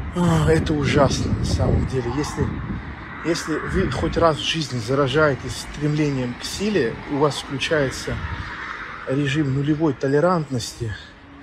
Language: Russian